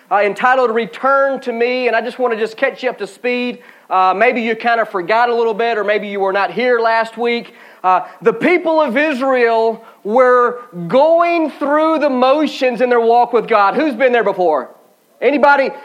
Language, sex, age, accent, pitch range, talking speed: English, male, 40-59, American, 230-280 Hz, 200 wpm